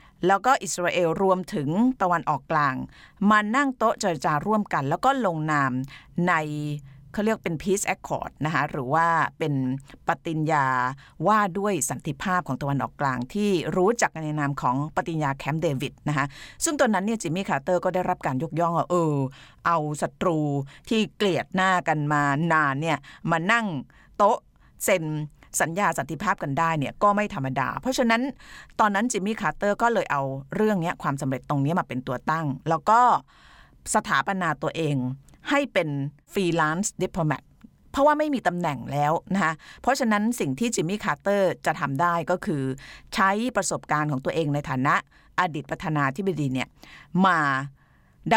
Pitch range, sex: 145-200 Hz, female